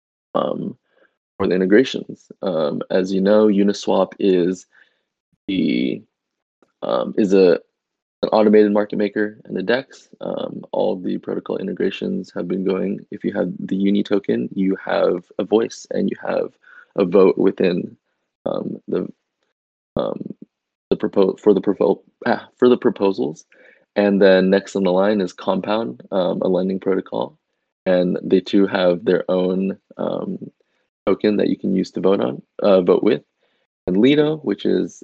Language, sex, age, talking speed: English, male, 20-39, 160 wpm